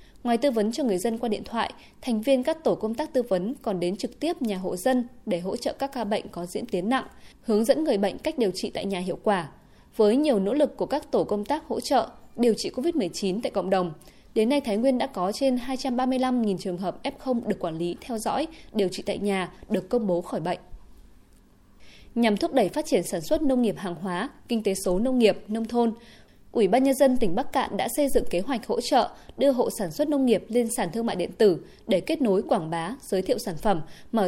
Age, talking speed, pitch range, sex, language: 20-39, 245 wpm, 195-260 Hz, female, Vietnamese